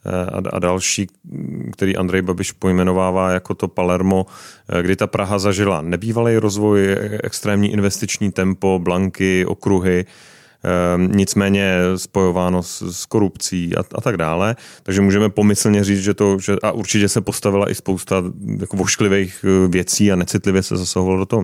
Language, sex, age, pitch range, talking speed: Czech, male, 30-49, 95-105 Hz, 140 wpm